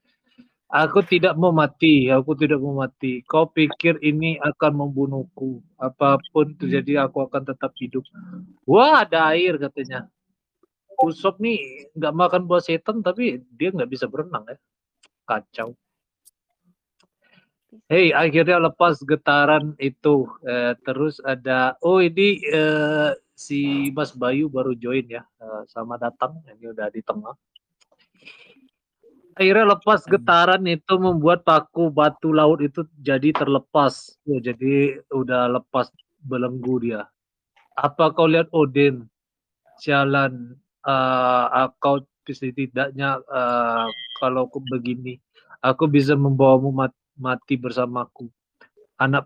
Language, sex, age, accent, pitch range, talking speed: Indonesian, male, 20-39, native, 130-170 Hz, 115 wpm